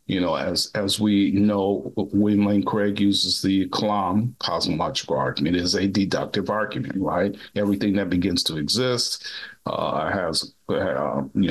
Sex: male